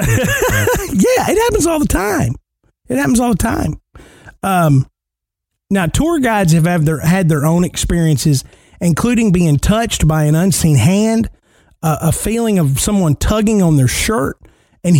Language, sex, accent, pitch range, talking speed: English, male, American, 140-180 Hz, 150 wpm